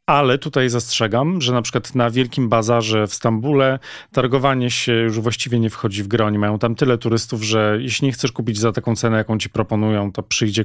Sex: male